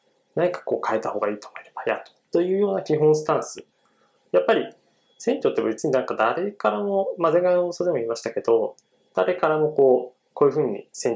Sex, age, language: male, 20-39, Japanese